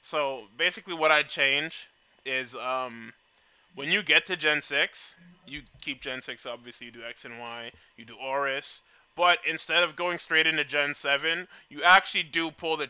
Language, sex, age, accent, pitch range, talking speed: English, male, 20-39, American, 135-170 Hz, 180 wpm